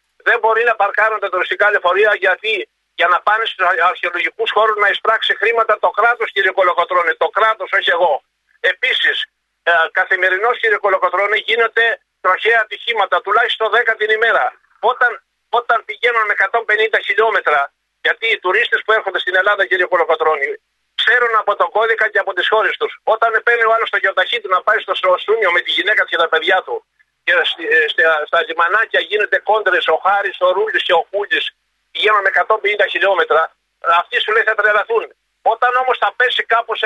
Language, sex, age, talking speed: Greek, male, 50-69, 165 wpm